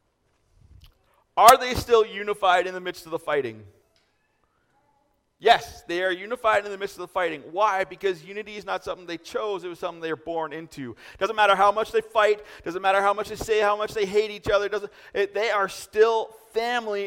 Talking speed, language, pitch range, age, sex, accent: 205 wpm, English, 185-230 Hz, 30-49, male, American